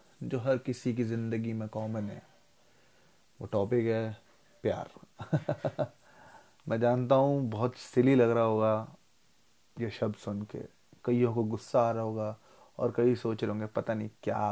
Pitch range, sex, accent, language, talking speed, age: 110-130 Hz, male, native, Hindi, 155 wpm, 20-39